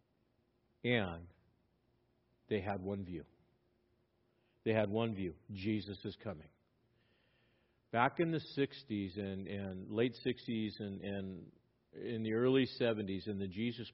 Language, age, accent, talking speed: English, 50-69, American, 125 wpm